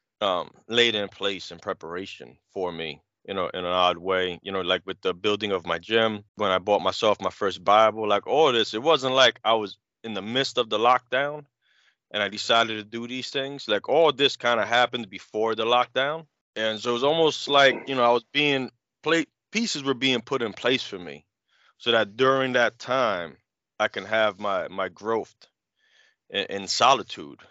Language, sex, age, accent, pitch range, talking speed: English, male, 30-49, American, 100-125 Hz, 205 wpm